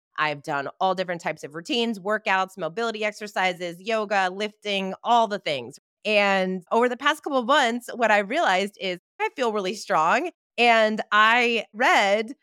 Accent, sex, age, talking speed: American, female, 20-39, 160 wpm